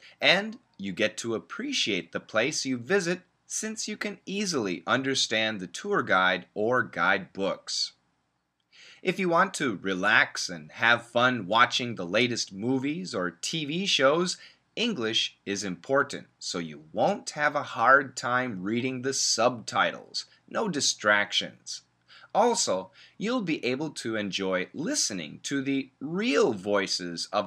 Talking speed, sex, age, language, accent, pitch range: 135 wpm, male, 30-49, Russian, American, 100-160 Hz